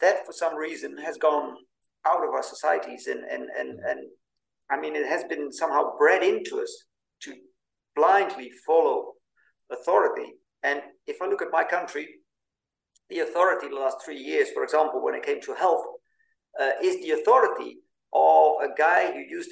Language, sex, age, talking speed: Dutch, male, 50-69, 170 wpm